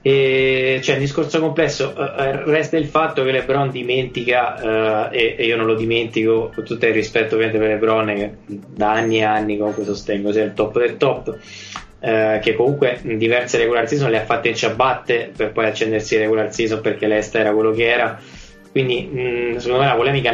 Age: 20-39